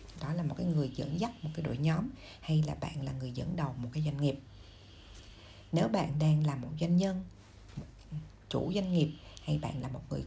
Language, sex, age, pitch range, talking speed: Vietnamese, female, 60-79, 135-170 Hz, 215 wpm